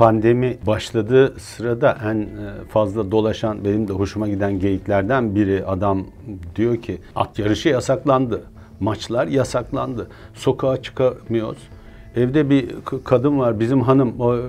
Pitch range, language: 100-120 Hz, Turkish